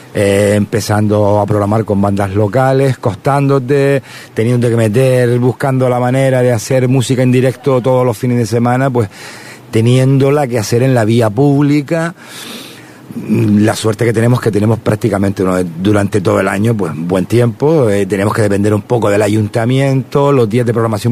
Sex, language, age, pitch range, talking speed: male, Spanish, 50-69, 100-125 Hz, 160 wpm